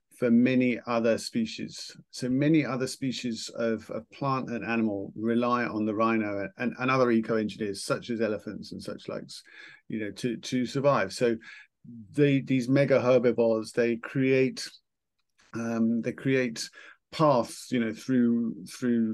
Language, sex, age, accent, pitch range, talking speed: English, male, 50-69, British, 115-130 Hz, 145 wpm